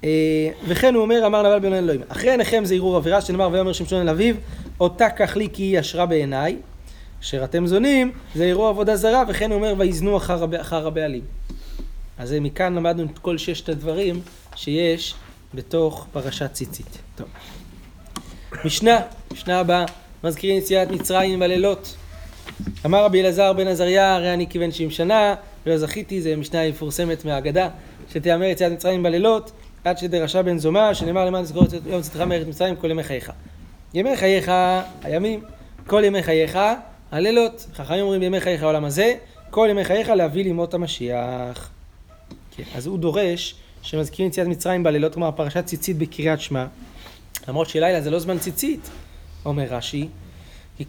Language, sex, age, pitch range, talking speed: Hebrew, male, 30-49, 150-190 Hz, 155 wpm